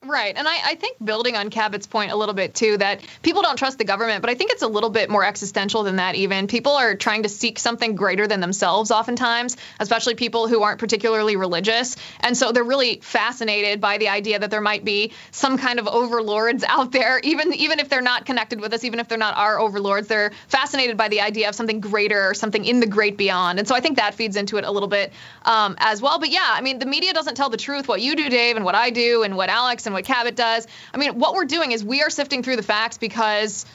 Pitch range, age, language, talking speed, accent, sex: 215-260 Hz, 20-39, English, 260 wpm, American, female